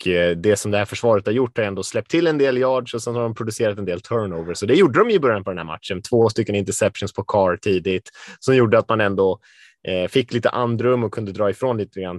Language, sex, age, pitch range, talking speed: Swedish, male, 20-39, 90-115 Hz, 270 wpm